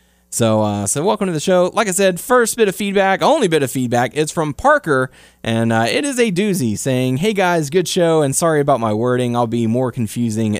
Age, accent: 20-39, American